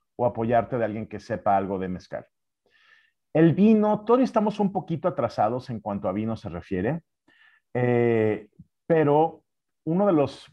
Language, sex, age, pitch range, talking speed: English, male, 40-59, 110-140 Hz, 155 wpm